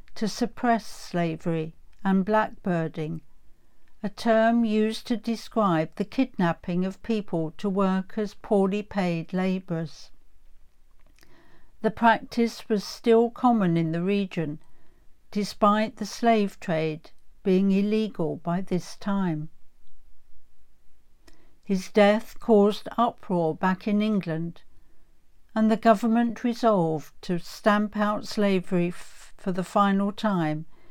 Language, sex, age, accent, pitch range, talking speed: English, female, 60-79, British, 170-215 Hz, 110 wpm